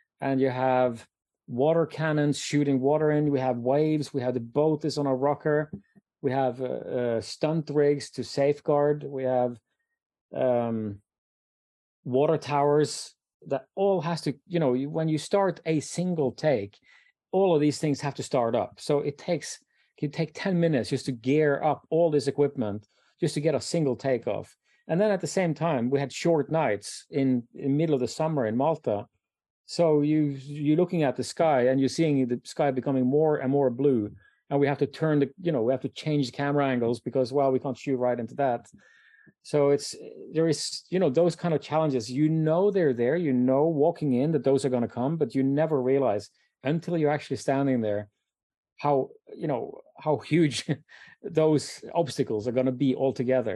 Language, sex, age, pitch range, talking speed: English, male, 30-49, 130-155 Hz, 195 wpm